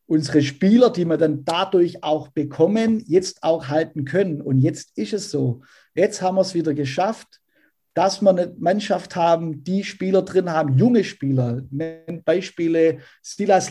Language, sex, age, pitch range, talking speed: German, male, 50-69, 155-195 Hz, 160 wpm